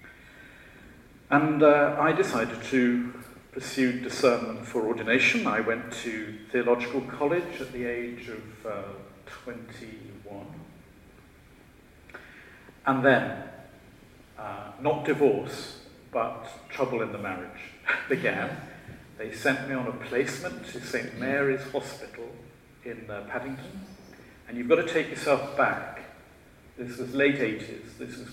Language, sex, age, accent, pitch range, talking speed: English, male, 50-69, British, 110-130 Hz, 120 wpm